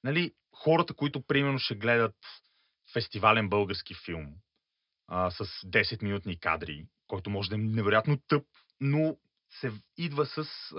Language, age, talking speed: Bulgarian, 30-49, 135 wpm